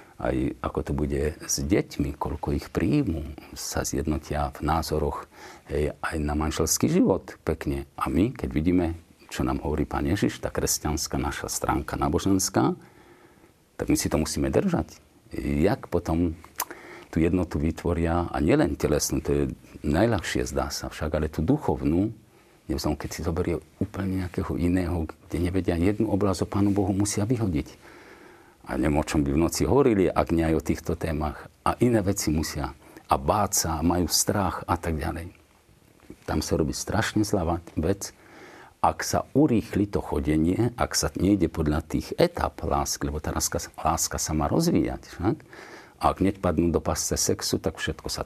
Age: 50-69